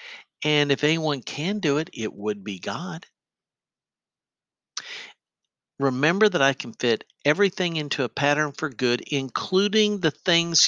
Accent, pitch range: American, 130-170 Hz